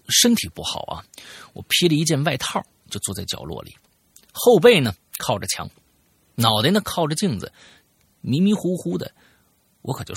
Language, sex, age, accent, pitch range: Chinese, male, 50-69, native, 110-180 Hz